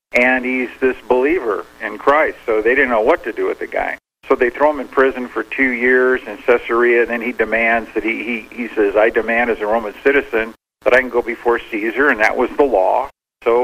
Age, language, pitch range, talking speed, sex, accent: 50-69, English, 110-135 Hz, 240 wpm, male, American